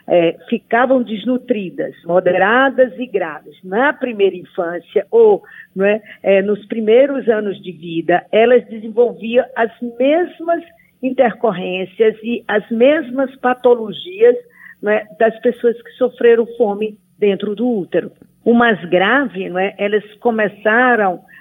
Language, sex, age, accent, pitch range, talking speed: Portuguese, female, 50-69, Brazilian, 200-255 Hz, 120 wpm